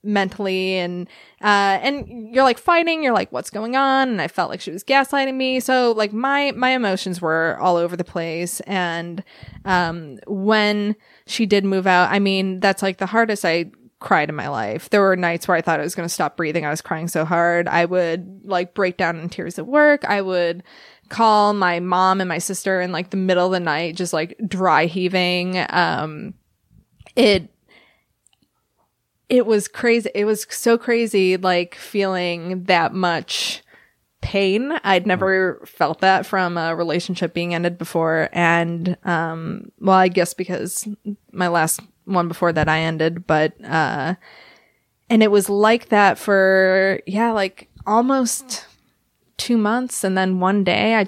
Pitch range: 175-210 Hz